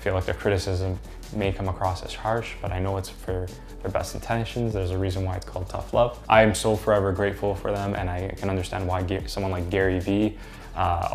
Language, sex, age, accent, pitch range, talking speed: English, male, 10-29, American, 90-105 Hz, 225 wpm